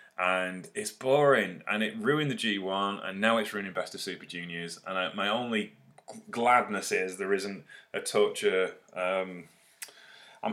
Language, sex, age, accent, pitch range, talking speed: English, male, 30-49, British, 95-150 Hz, 150 wpm